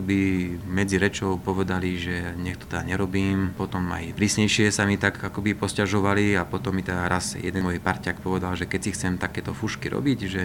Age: 30-49